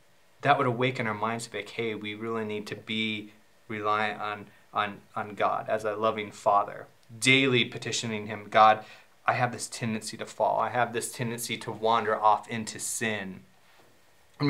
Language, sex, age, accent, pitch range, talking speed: English, male, 20-39, American, 110-140 Hz, 170 wpm